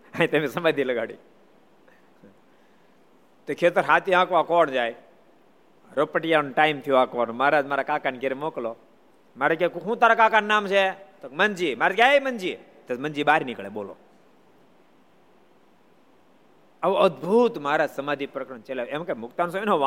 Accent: native